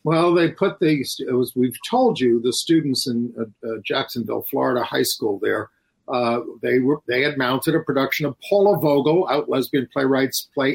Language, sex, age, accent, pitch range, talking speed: English, male, 50-69, American, 140-195 Hz, 185 wpm